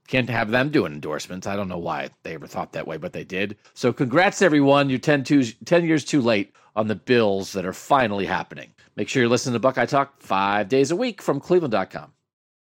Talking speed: 220 wpm